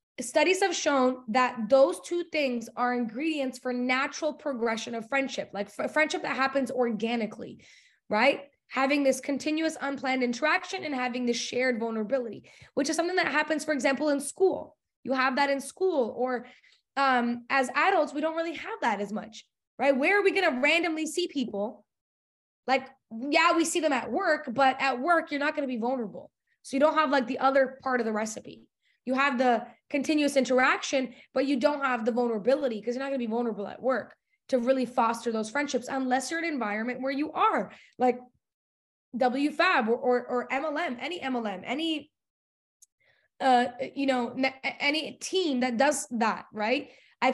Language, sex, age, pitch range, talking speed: English, female, 20-39, 250-300 Hz, 180 wpm